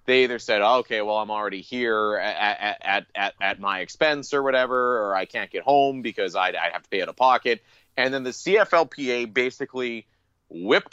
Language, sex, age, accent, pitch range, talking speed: English, male, 30-49, American, 105-135 Hz, 200 wpm